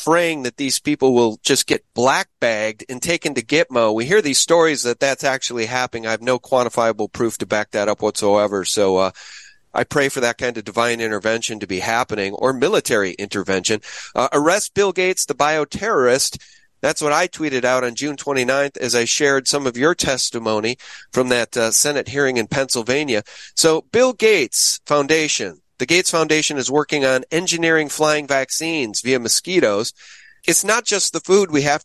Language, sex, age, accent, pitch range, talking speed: English, male, 40-59, American, 125-165 Hz, 185 wpm